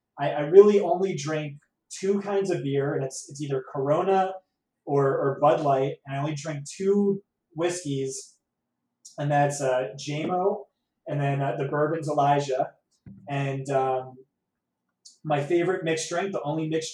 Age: 20-39